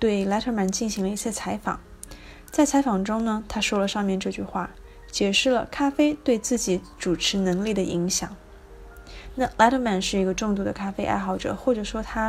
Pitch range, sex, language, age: 190-255 Hz, female, Chinese, 20-39